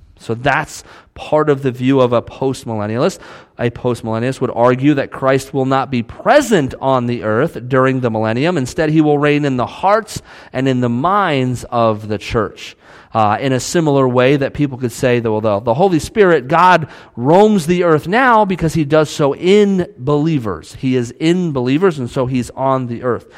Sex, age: male, 40-59